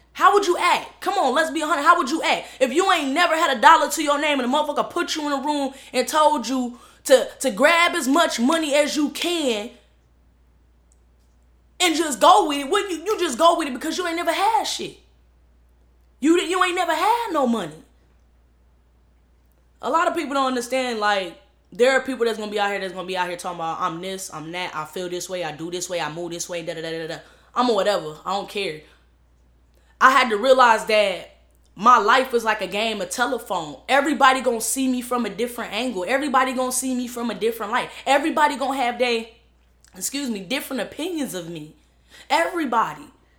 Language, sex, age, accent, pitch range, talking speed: English, female, 10-29, American, 205-290 Hz, 220 wpm